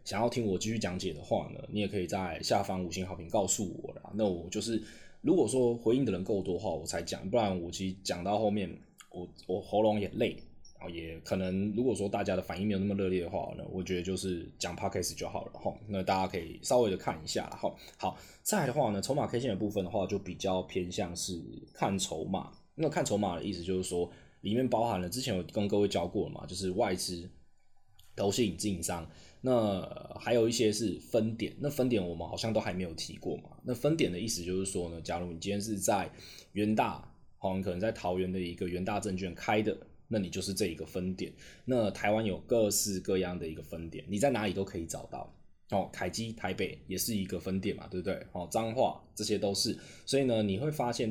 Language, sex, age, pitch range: Chinese, male, 20-39, 90-110 Hz